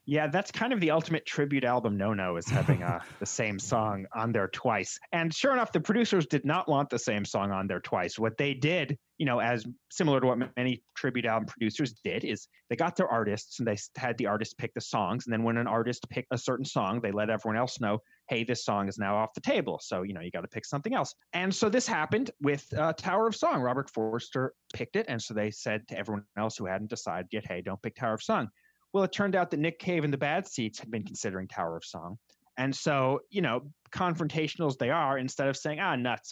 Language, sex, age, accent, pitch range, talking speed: English, male, 30-49, American, 105-160 Hz, 250 wpm